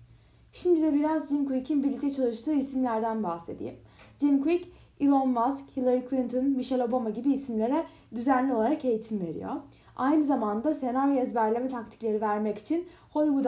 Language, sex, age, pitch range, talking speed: Turkish, female, 10-29, 220-290 Hz, 140 wpm